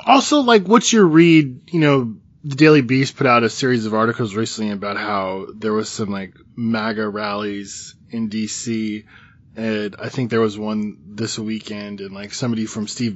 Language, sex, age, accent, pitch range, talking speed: English, male, 20-39, American, 105-120 Hz, 180 wpm